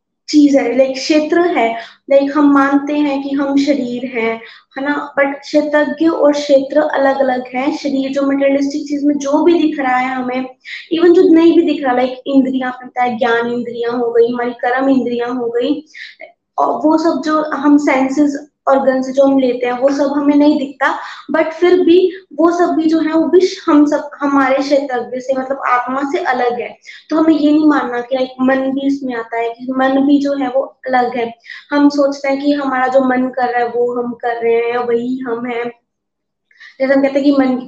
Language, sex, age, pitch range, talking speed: Hindi, female, 20-39, 245-290 Hz, 145 wpm